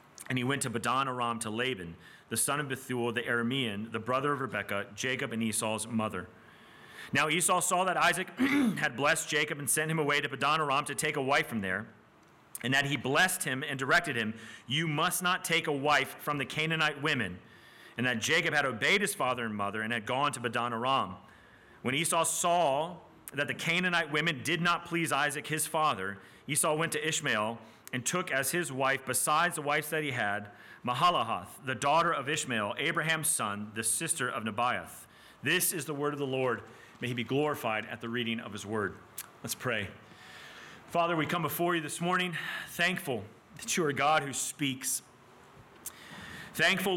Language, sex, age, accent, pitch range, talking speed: English, male, 30-49, American, 120-160 Hz, 190 wpm